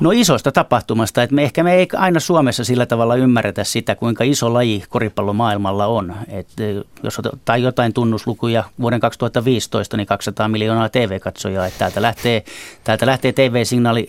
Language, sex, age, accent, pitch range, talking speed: Finnish, male, 30-49, native, 105-125 Hz, 155 wpm